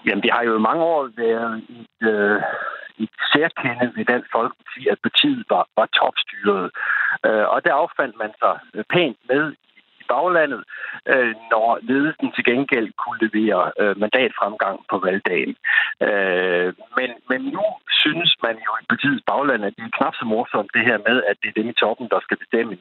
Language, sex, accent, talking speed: Danish, male, native, 170 wpm